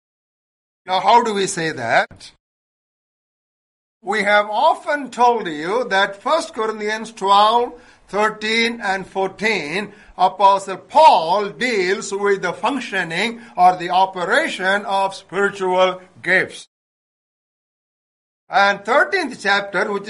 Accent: Indian